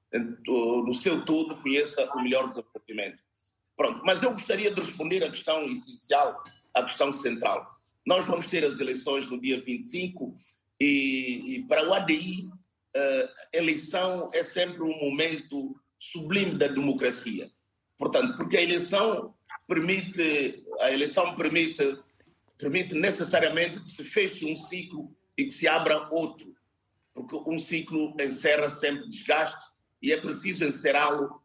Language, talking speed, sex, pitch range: Portuguese, 140 wpm, male, 145-190 Hz